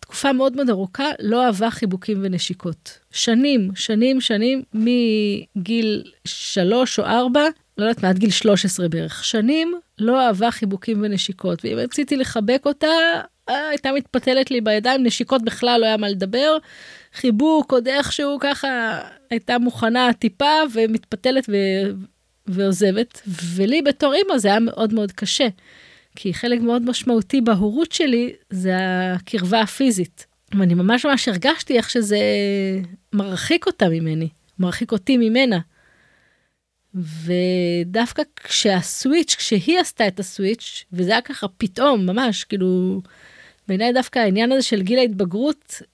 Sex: female